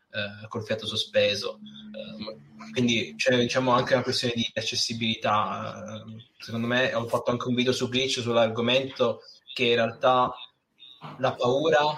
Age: 20-39